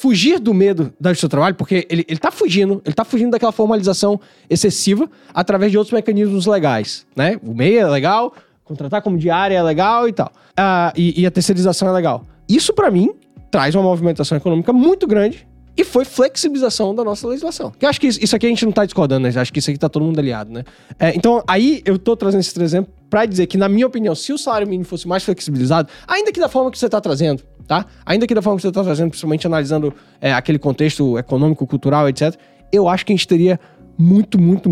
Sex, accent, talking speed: male, Brazilian, 225 wpm